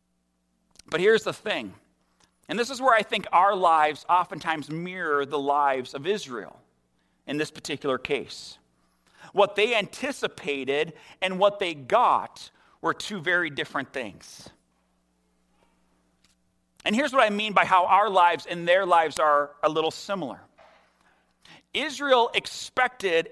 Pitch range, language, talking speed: 150-225 Hz, English, 135 wpm